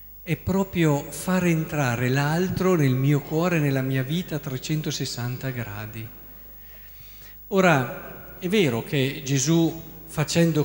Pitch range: 130-170 Hz